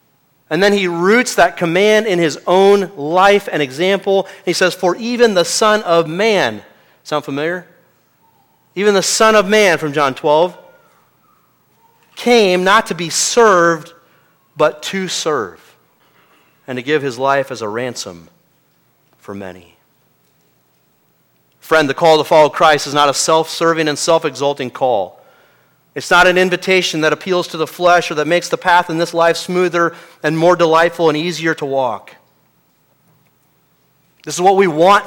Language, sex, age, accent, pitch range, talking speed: English, male, 40-59, American, 150-185 Hz, 155 wpm